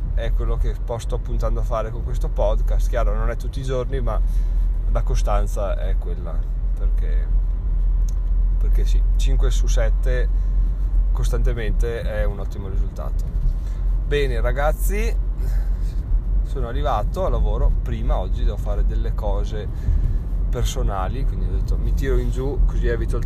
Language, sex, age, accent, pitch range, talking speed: Italian, male, 20-39, native, 105-125 Hz, 140 wpm